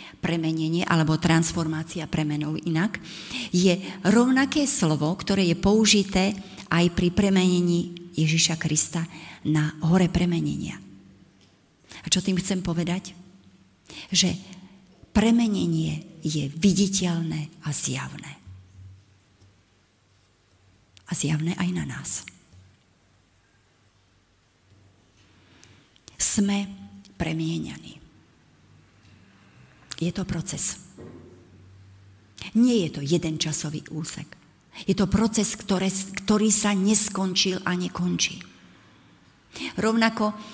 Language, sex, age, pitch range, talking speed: Slovak, female, 40-59, 115-190 Hz, 80 wpm